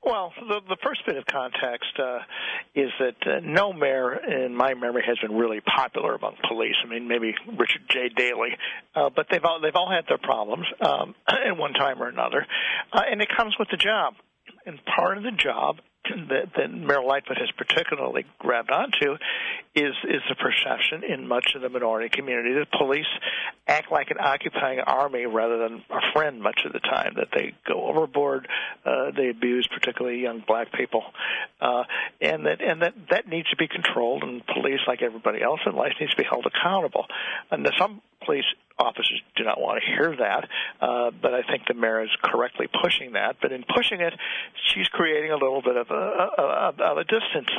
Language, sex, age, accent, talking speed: English, male, 60-79, American, 200 wpm